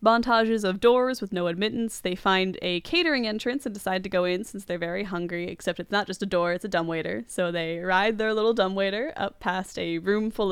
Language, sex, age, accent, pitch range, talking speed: English, female, 10-29, American, 180-220 Hz, 230 wpm